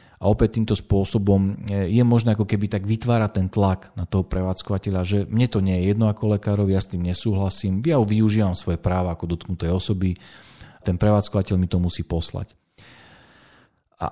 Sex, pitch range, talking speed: male, 90-105 Hz, 175 wpm